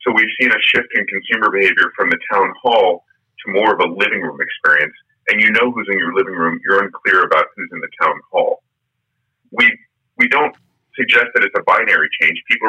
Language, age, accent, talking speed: English, 30-49, American, 215 wpm